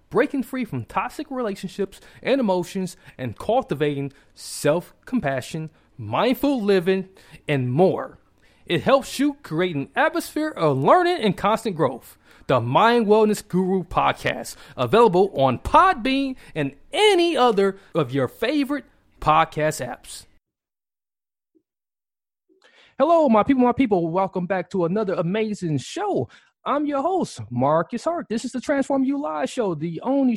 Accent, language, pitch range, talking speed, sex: American, English, 150-250 Hz, 130 wpm, male